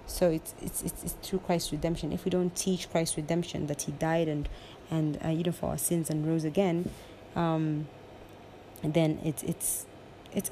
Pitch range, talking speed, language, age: 150-170 Hz, 190 wpm, English, 30-49